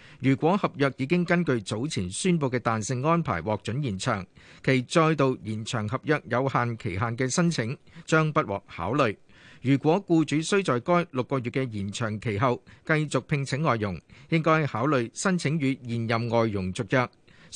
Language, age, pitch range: Chinese, 50-69, 115-160 Hz